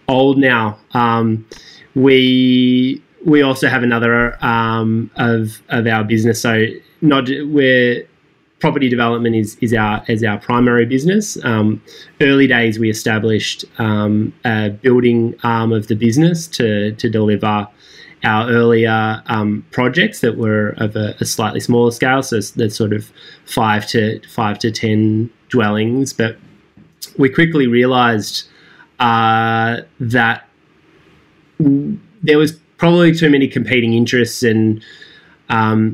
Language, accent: English, Australian